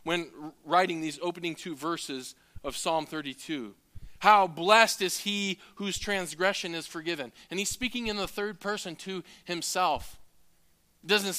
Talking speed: 150 wpm